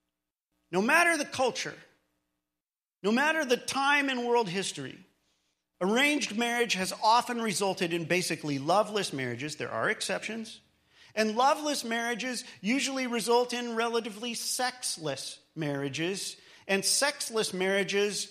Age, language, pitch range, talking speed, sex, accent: 40-59, English, 170-235 Hz, 115 wpm, male, American